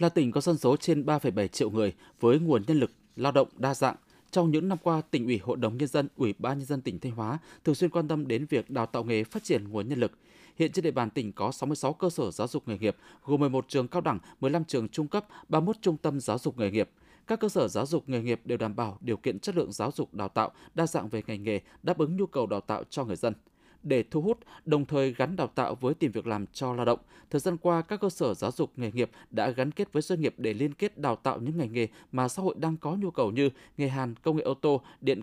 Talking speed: 280 wpm